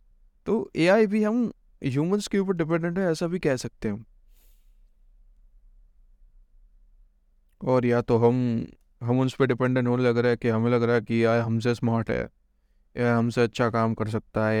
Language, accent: Hindi, native